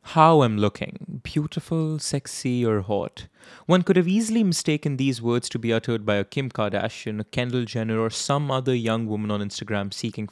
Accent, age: Indian, 20-39